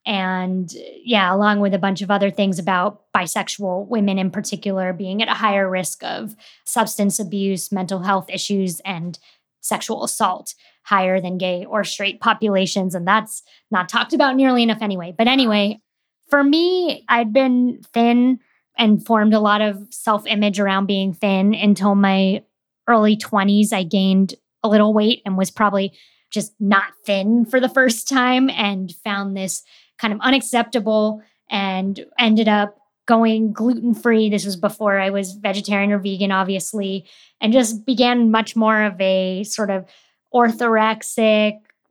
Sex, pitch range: female, 195-225 Hz